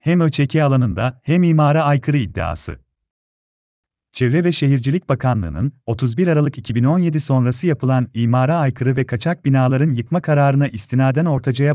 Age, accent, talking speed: 40-59, native, 130 wpm